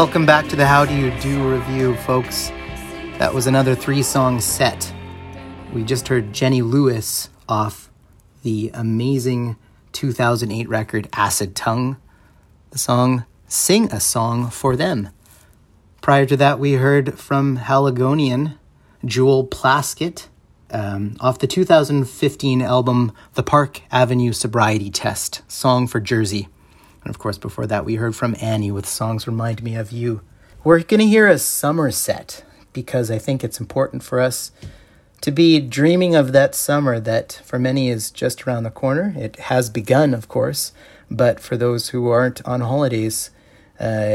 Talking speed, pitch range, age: 150 wpm, 110-135 Hz, 30-49